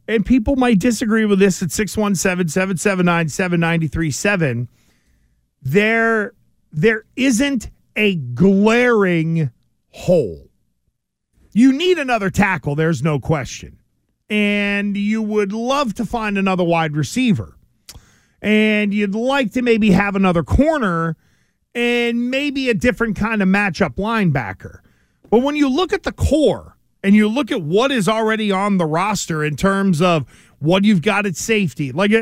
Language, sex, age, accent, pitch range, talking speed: English, male, 40-59, American, 180-230 Hz, 130 wpm